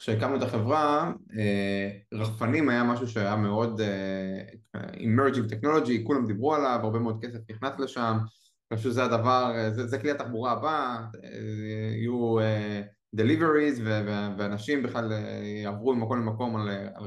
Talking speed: 135 wpm